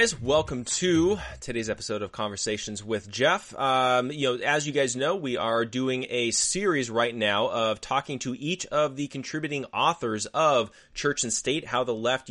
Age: 20-39